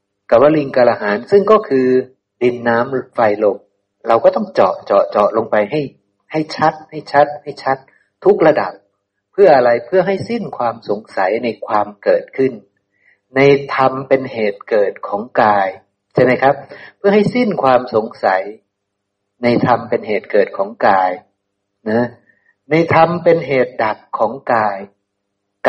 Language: Thai